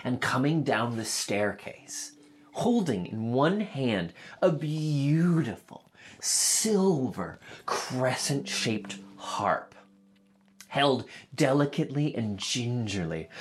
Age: 30-49